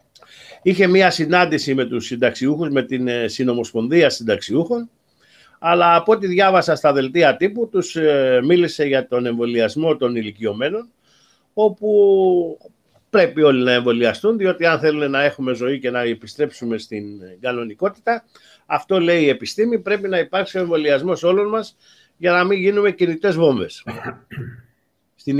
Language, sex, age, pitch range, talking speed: Greek, male, 50-69, 140-200 Hz, 135 wpm